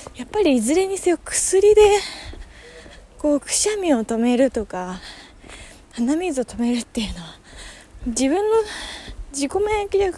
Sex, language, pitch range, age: female, Japanese, 220-300 Hz, 20-39